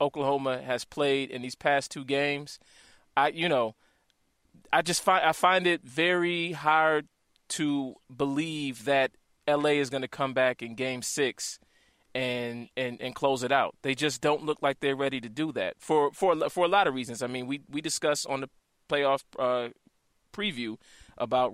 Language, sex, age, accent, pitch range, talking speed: English, male, 30-49, American, 125-150 Hz, 180 wpm